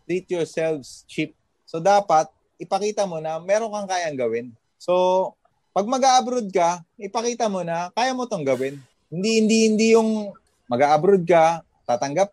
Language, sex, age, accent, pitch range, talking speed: Filipino, male, 20-39, native, 135-195 Hz, 150 wpm